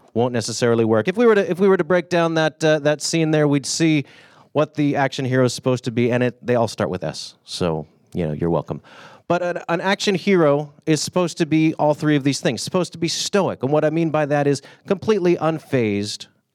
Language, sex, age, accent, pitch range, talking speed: English, male, 30-49, American, 110-155 Hz, 245 wpm